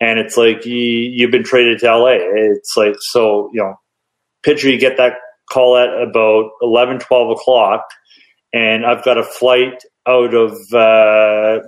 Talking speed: 165 wpm